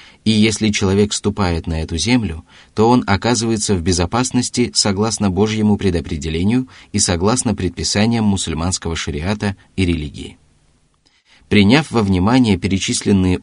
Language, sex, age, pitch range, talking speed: Russian, male, 30-49, 90-110 Hz, 115 wpm